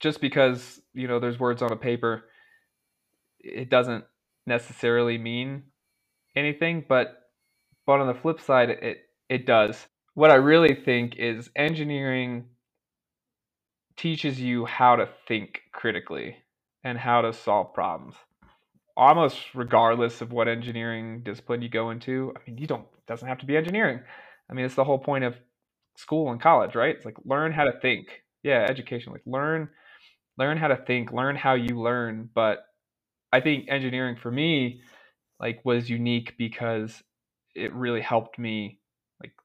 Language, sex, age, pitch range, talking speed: English, male, 20-39, 115-135 Hz, 155 wpm